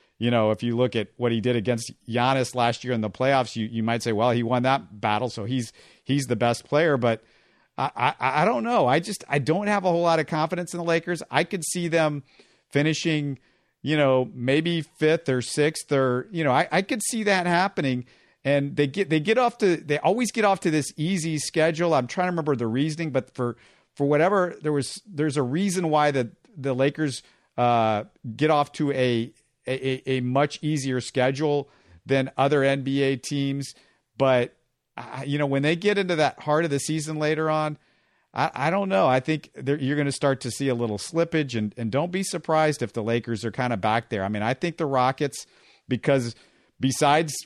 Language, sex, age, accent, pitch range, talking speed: English, male, 50-69, American, 125-155 Hz, 215 wpm